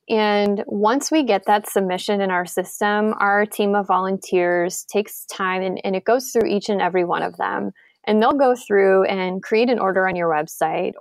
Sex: female